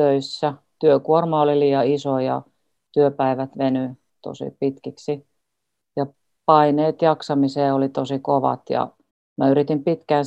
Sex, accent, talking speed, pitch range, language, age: female, native, 115 wpm, 135-145 Hz, Finnish, 40-59